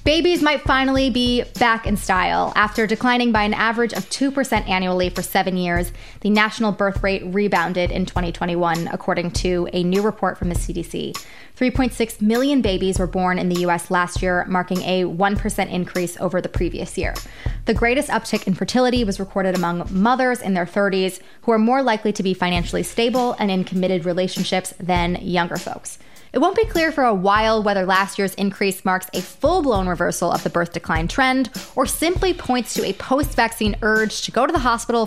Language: English